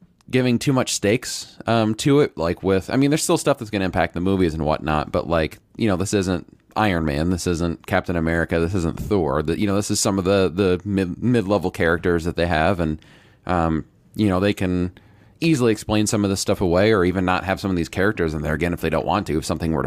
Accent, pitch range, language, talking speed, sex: American, 85-105 Hz, English, 255 wpm, male